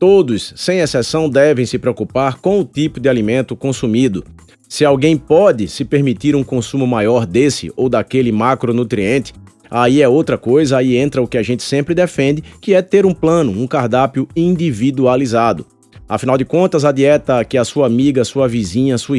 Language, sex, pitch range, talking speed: Portuguese, male, 115-145 Hz, 175 wpm